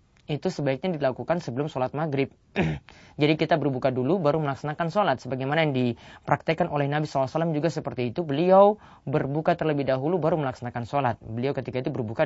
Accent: native